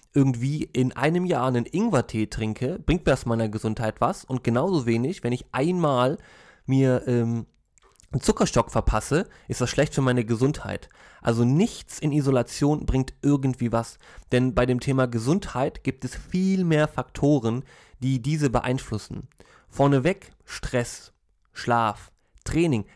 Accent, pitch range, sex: German, 115-150 Hz, male